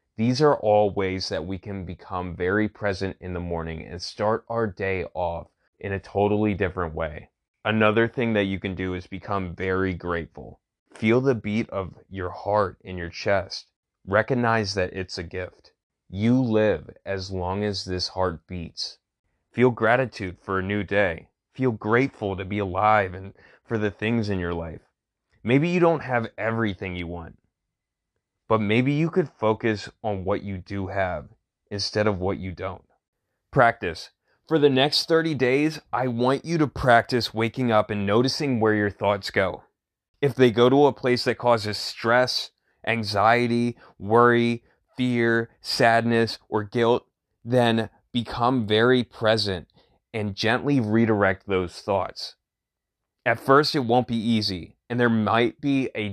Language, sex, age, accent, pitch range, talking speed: English, male, 20-39, American, 95-120 Hz, 160 wpm